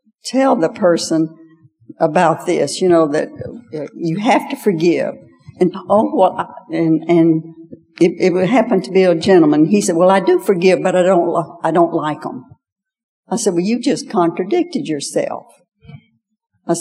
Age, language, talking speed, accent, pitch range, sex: 60-79, English, 170 wpm, American, 170-220 Hz, female